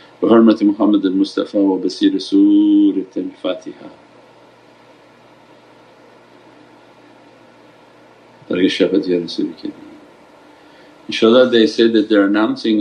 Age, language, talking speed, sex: 50-69, English, 65 wpm, male